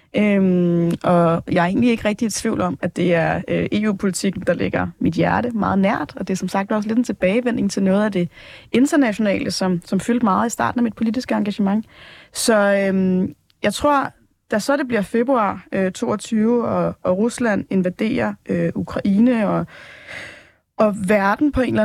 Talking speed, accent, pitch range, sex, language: 185 wpm, native, 185-230 Hz, female, Danish